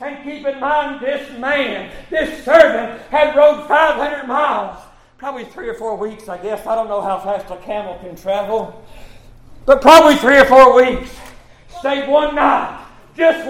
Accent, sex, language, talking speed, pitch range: American, male, English, 170 wpm, 210-295 Hz